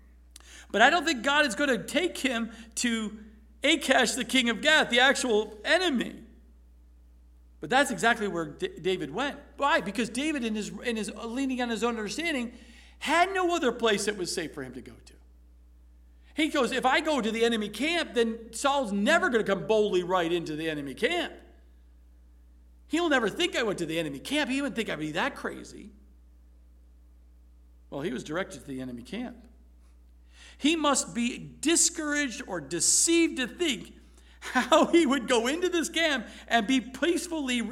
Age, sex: 50-69, male